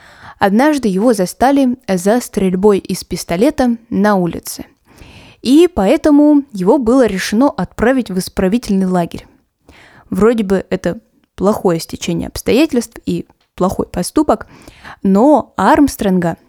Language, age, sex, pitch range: Russian, 20-39, female, 185-270 Hz